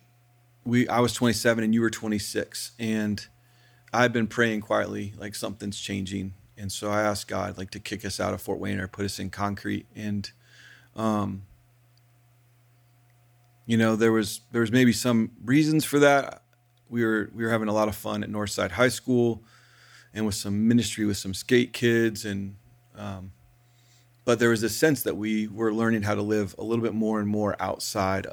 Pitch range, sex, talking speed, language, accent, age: 105-120 Hz, male, 190 wpm, English, American, 40-59